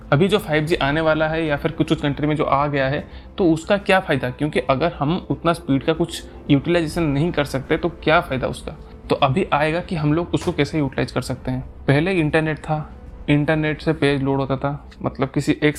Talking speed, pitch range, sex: 230 wpm, 135-160 Hz, male